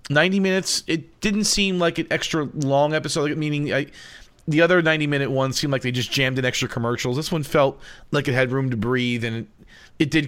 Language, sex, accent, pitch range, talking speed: English, male, American, 120-155 Hz, 210 wpm